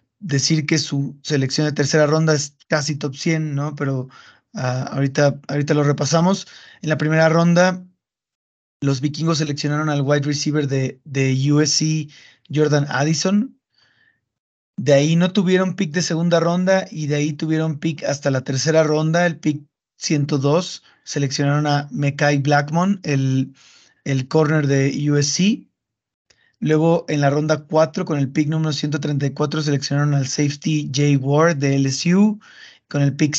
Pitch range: 145-165 Hz